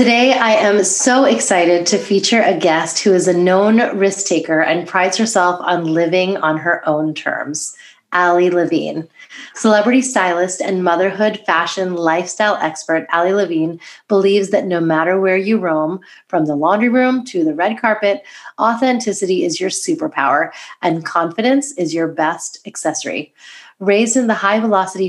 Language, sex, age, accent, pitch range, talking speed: English, female, 30-49, American, 170-215 Hz, 155 wpm